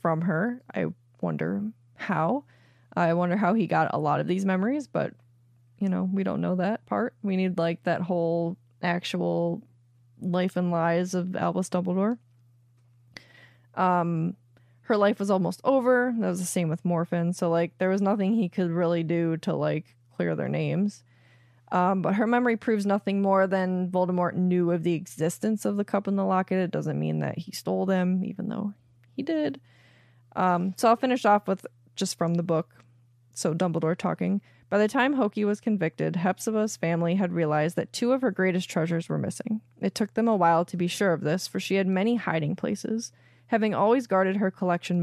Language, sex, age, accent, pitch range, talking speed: English, female, 20-39, American, 165-200 Hz, 190 wpm